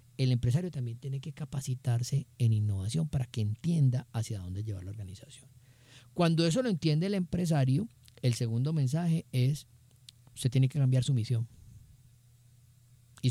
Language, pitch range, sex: Spanish, 120-145 Hz, male